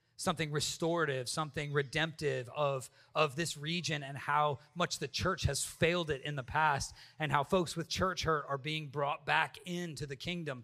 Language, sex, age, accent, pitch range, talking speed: English, male, 30-49, American, 125-160 Hz, 180 wpm